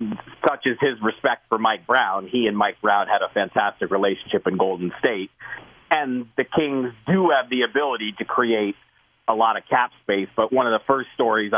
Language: English